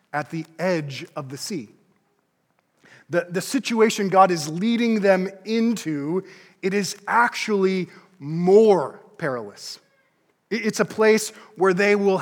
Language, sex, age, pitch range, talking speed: English, male, 30-49, 160-200 Hz, 125 wpm